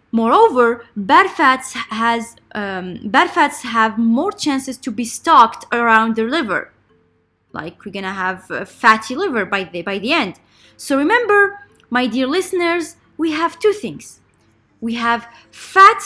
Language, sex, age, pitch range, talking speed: Arabic, female, 20-39, 225-320 Hz, 155 wpm